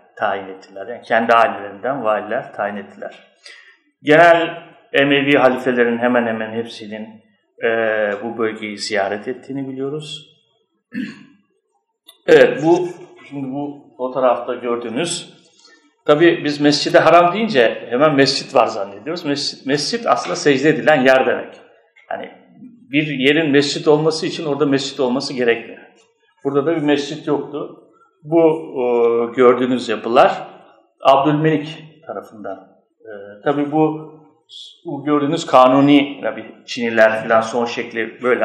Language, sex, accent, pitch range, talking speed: Turkish, male, native, 115-160 Hz, 115 wpm